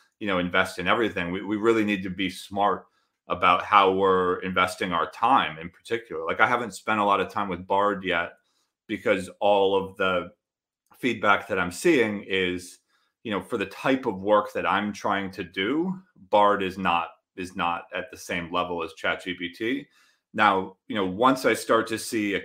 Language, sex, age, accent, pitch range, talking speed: English, male, 30-49, American, 90-115 Hz, 190 wpm